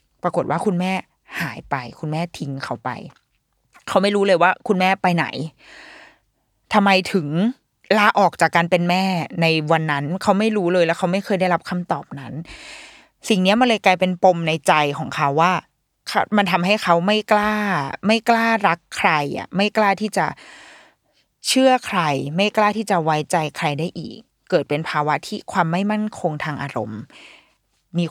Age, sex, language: 20-39, female, Thai